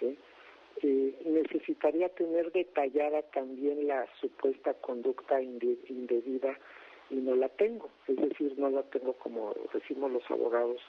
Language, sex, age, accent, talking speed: Spanish, male, 50-69, Mexican, 120 wpm